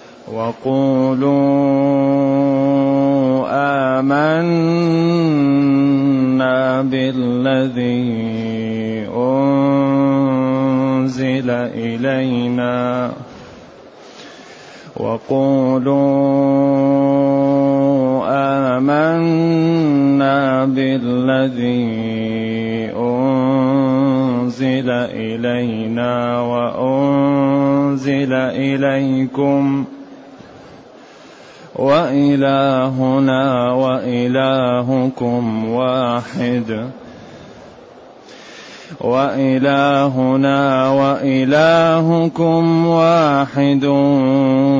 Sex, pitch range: male, 125-140 Hz